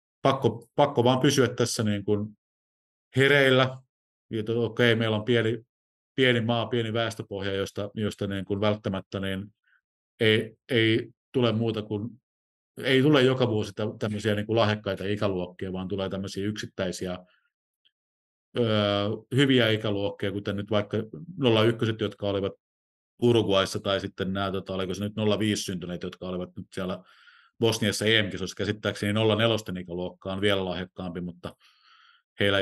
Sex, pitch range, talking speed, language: male, 95-110 Hz, 130 wpm, Finnish